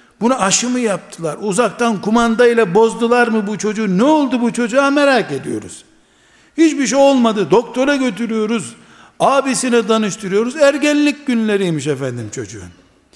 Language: Turkish